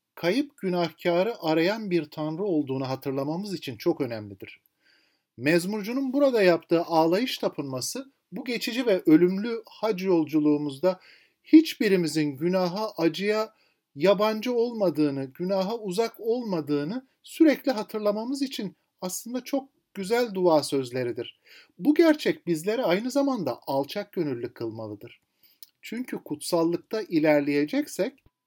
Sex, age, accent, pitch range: male, 50-69, native, 155-245 Hz